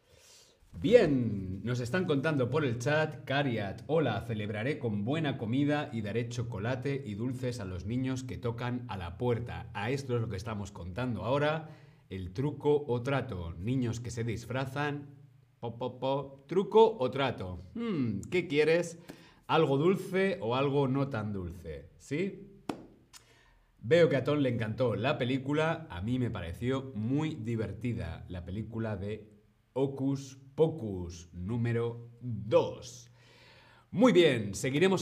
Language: Spanish